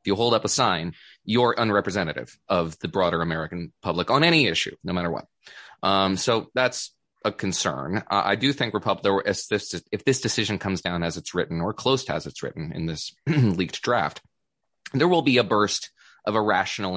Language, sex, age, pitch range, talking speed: English, male, 20-39, 85-105 Hz, 200 wpm